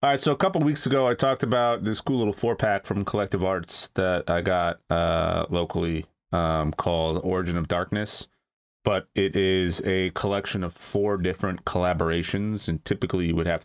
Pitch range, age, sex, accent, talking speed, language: 85-105 Hz, 30-49, male, American, 185 wpm, English